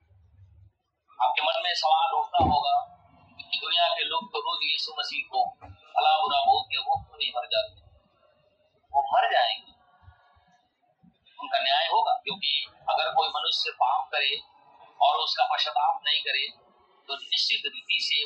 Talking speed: 90 wpm